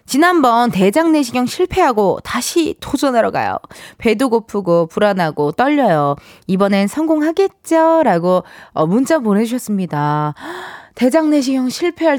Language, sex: Korean, female